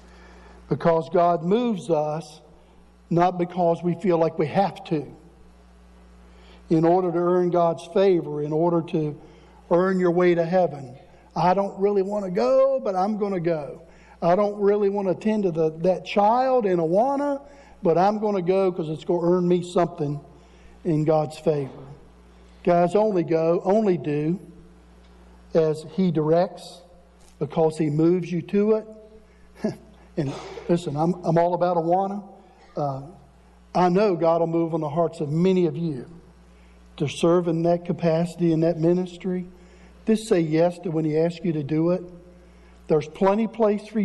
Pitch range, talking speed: 150-185 Hz, 165 wpm